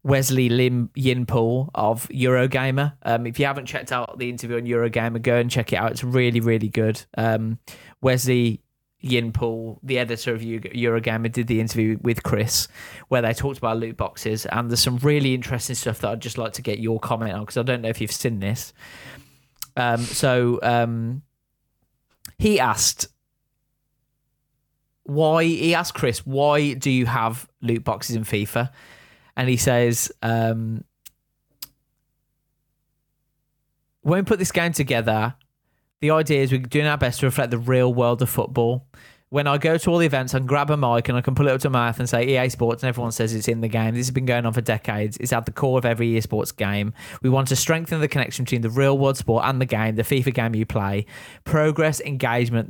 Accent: British